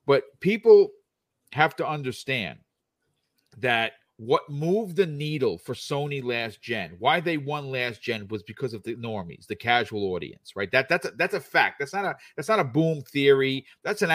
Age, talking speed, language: 40-59, 185 wpm, English